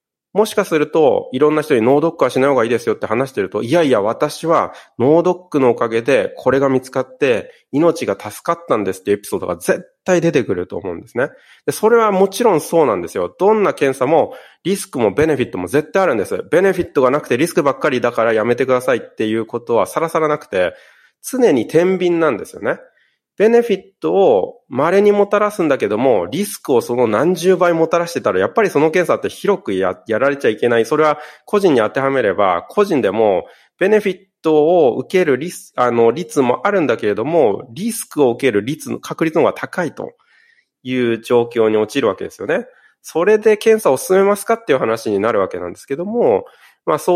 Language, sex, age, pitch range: Japanese, male, 30-49, 125-200 Hz